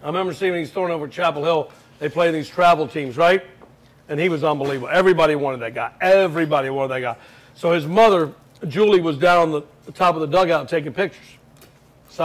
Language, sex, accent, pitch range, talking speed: English, male, American, 145-190 Hz, 220 wpm